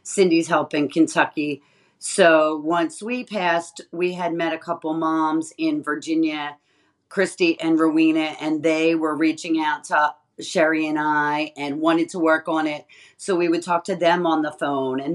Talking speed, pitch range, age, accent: 175 wpm, 155-195 Hz, 40-59, American